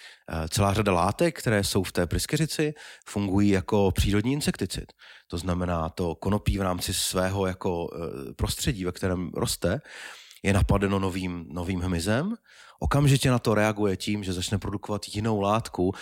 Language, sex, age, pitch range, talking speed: Slovak, male, 30-49, 90-110 Hz, 145 wpm